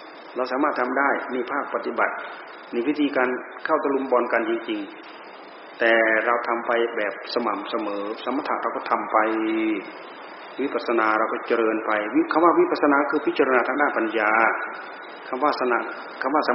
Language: Thai